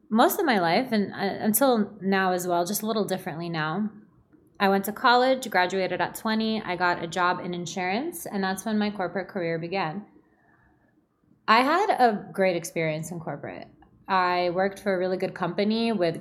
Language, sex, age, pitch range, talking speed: English, female, 20-39, 180-220 Hz, 180 wpm